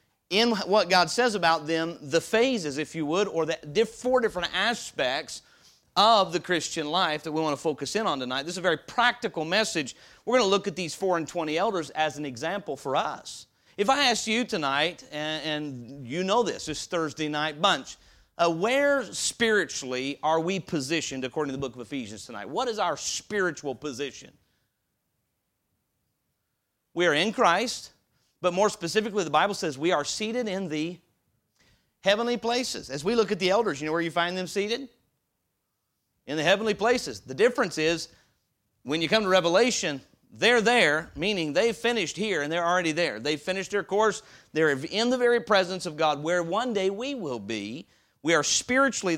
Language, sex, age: English, male, 40-59